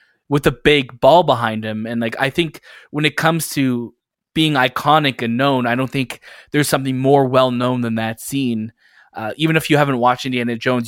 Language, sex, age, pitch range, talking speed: English, male, 20-39, 125-150 Hz, 205 wpm